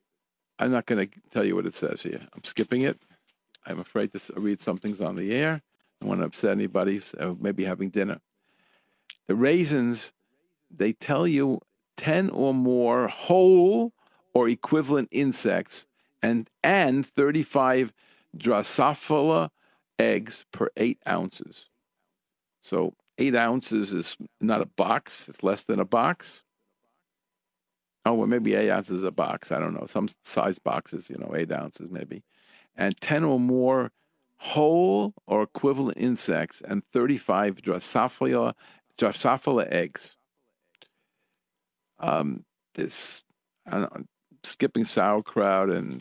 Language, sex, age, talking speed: English, male, 50-69, 135 wpm